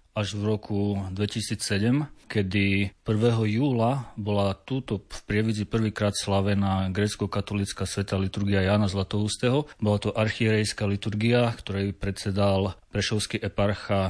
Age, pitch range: 30-49, 100-110 Hz